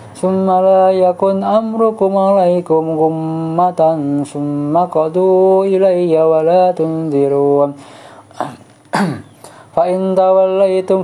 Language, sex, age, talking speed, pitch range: Arabic, male, 20-39, 70 wpm, 160-190 Hz